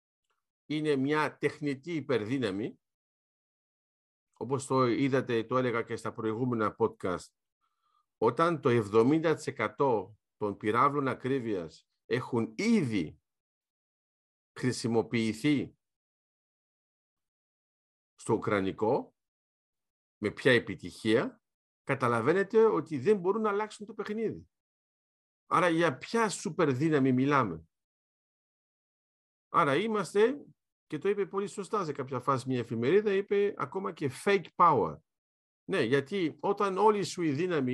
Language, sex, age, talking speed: Greek, male, 50-69, 105 wpm